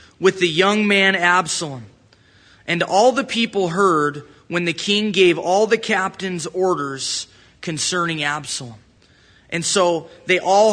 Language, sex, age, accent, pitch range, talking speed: English, male, 20-39, American, 150-195 Hz, 135 wpm